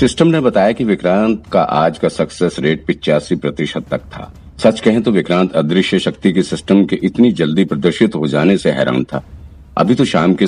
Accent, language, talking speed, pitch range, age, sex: native, Hindi, 200 wpm, 80-105 Hz, 50-69, male